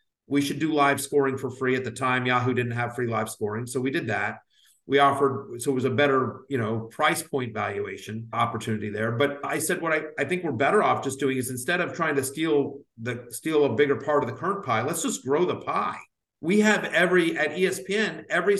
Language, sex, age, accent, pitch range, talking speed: English, male, 50-69, American, 140-180 Hz, 230 wpm